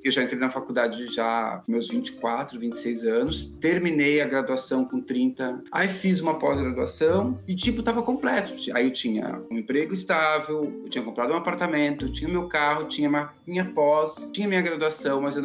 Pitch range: 130-185 Hz